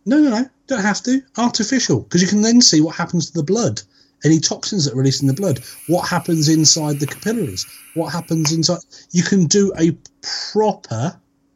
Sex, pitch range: male, 140-190 Hz